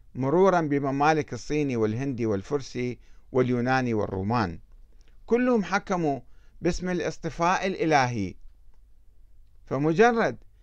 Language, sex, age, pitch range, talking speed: Arabic, male, 50-69, 110-165 Hz, 75 wpm